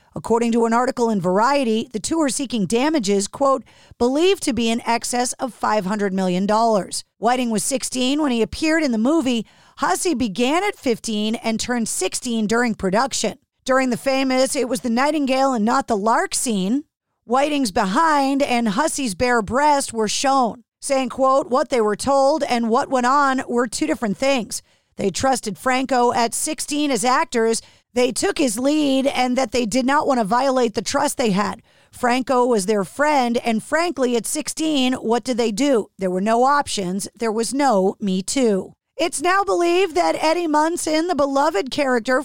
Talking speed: 180 wpm